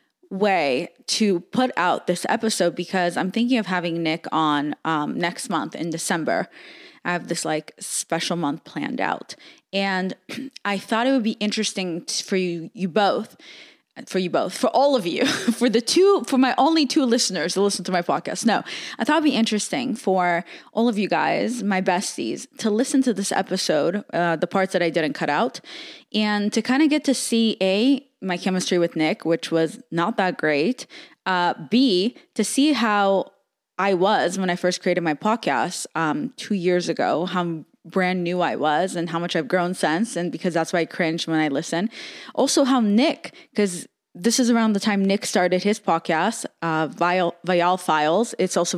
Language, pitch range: English, 175-235 Hz